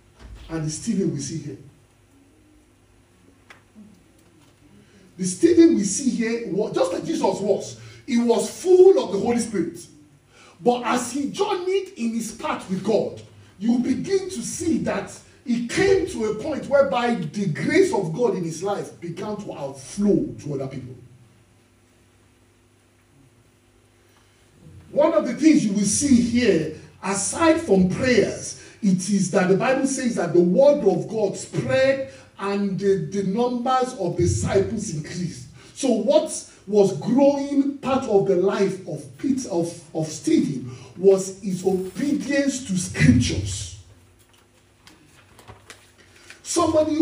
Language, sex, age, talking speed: English, male, 40-59, 135 wpm